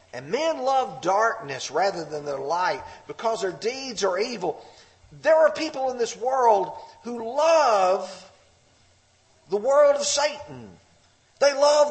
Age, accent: 50-69, American